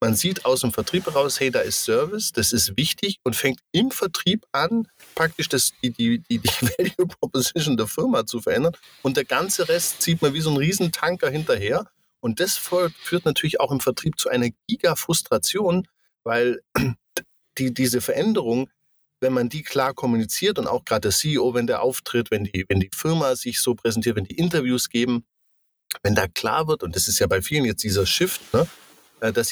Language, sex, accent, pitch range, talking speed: German, male, German, 120-165 Hz, 195 wpm